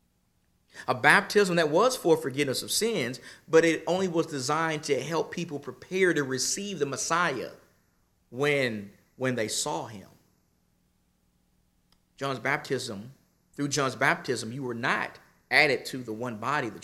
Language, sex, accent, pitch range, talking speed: English, male, American, 115-160 Hz, 145 wpm